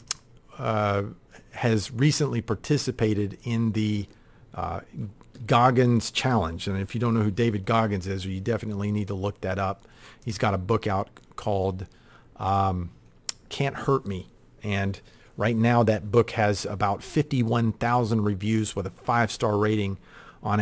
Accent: American